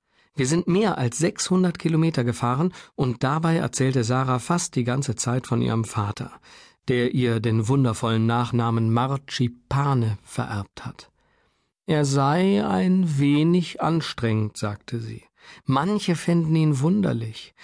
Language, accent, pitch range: German, German, 120-160 Hz